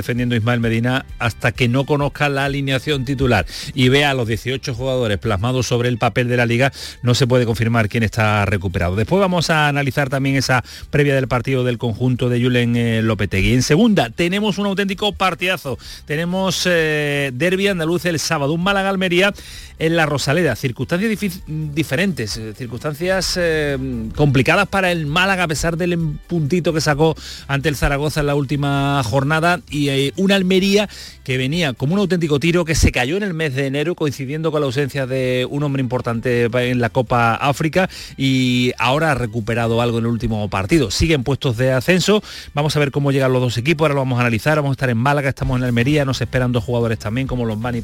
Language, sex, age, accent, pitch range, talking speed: Spanish, male, 40-59, Spanish, 120-160 Hz, 190 wpm